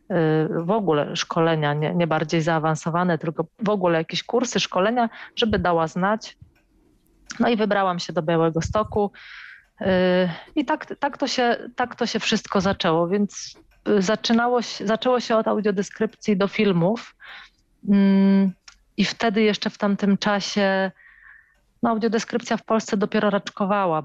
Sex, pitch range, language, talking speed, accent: female, 170-215 Hz, Polish, 130 wpm, native